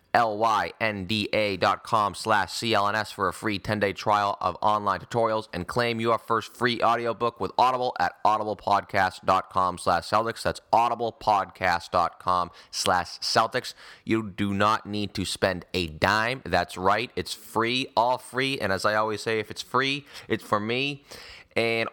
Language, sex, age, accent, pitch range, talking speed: English, male, 30-49, American, 95-115 Hz, 145 wpm